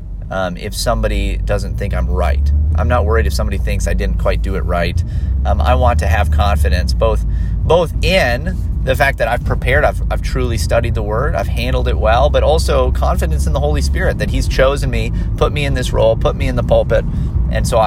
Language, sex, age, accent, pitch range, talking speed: English, male, 30-49, American, 80-110 Hz, 220 wpm